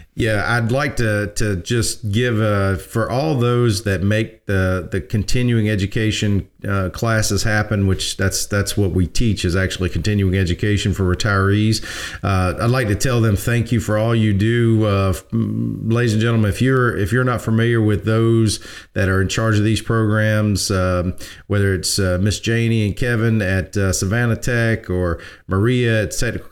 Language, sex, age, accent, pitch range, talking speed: English, male, 40-59, American, 95-115 Hz, 180 wpm